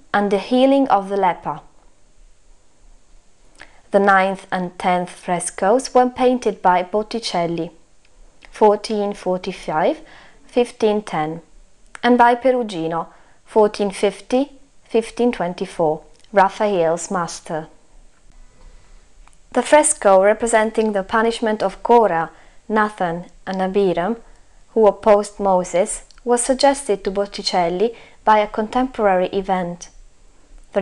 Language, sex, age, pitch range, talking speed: Italian, female, 20-39, 175-230 Hz, 90 wpm